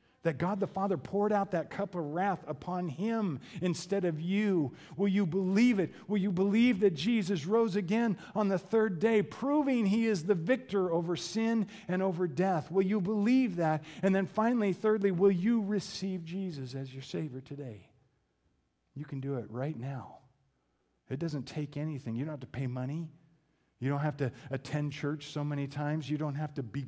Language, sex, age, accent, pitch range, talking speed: English, male, 50-69, American, 115-180 Hz, 190 wpm